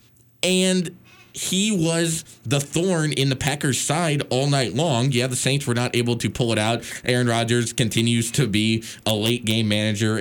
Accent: American